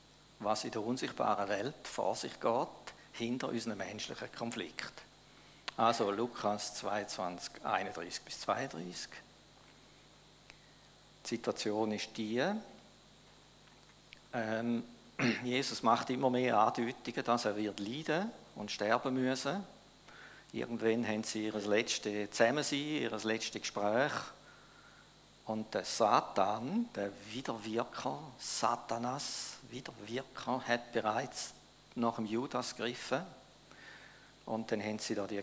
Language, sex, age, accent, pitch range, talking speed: German, male, 50-69, Austrian, 110-125 Hz, 105 wpm